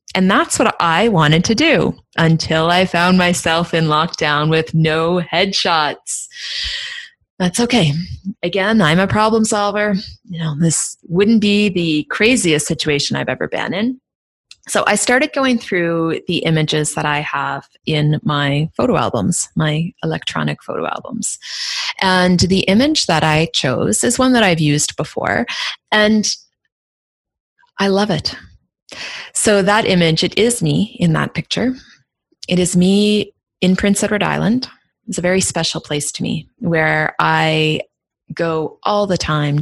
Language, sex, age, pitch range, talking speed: English, female, 30-49, 160-205 Hz, 150 wpm